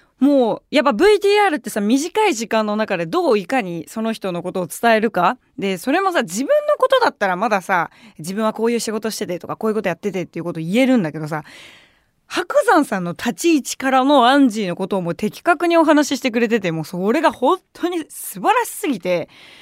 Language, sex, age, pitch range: Japanese, female, 20-39, 185-275 Hz